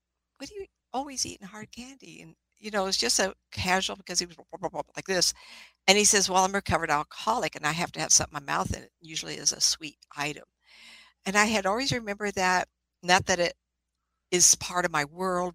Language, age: English, 60-79